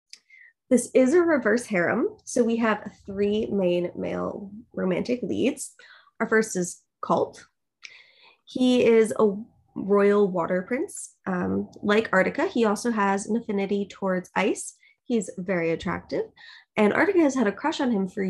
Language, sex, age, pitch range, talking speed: English, female, 20-39, 190-250 Hz, 150 wpm